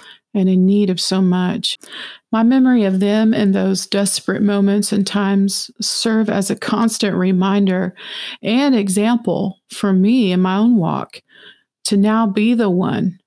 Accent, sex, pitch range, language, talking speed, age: American, female, 190-220 Hz, English, 155 wpm, 40-59